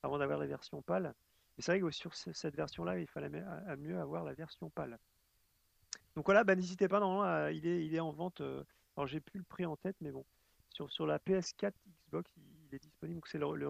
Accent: French